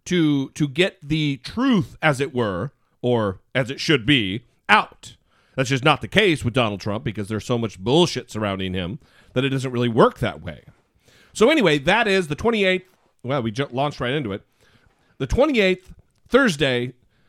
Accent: American